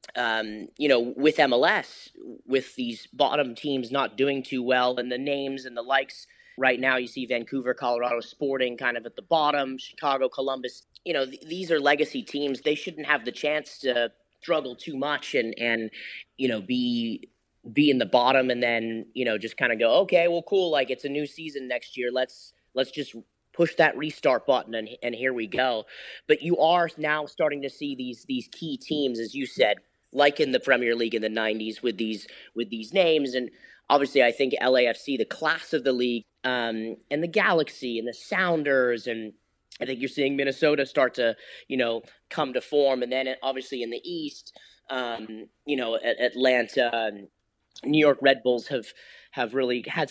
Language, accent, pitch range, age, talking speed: English, American, 120-150 Hz, 30-49, 195 wpm